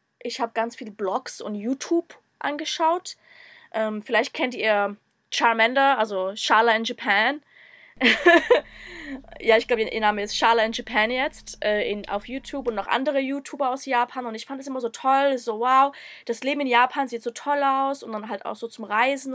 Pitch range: 225-275 Hz